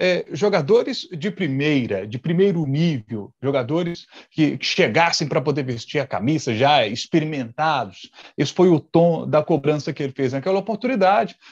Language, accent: Portuguese, Brazilian